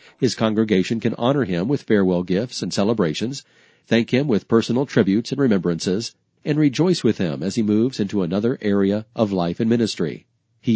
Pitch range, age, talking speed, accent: 105-130 Hz, 40-59, 180 wpm, American